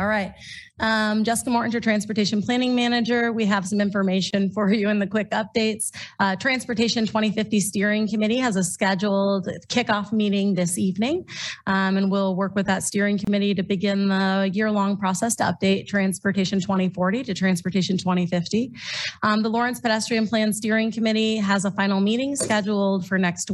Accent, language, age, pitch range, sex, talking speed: American, English, 30-49, 190-220 Hz, female, 165 wpm